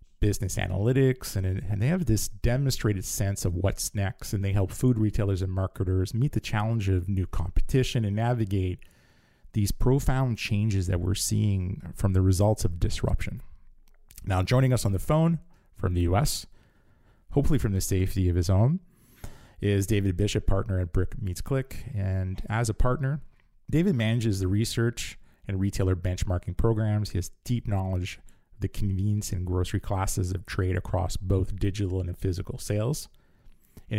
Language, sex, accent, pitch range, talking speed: English, male, American, 95-115 Hz, 160 wpm